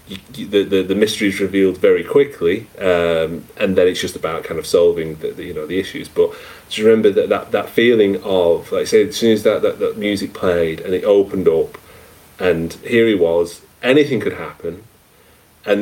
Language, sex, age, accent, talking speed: English, male, 30-49, British, 195 wpm